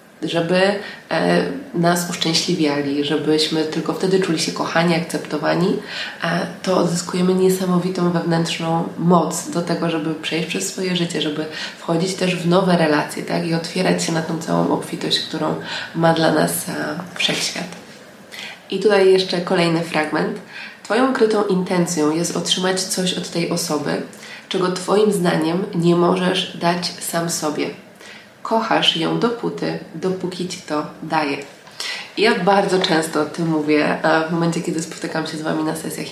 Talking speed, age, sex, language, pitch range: 145 wpm, 20-39, female, Polish, 160-190 Hz